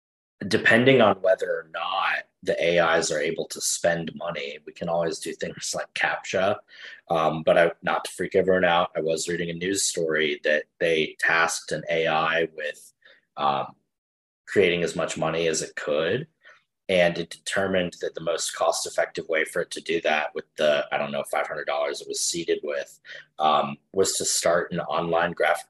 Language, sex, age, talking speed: English, male, 20-39, 175 wpm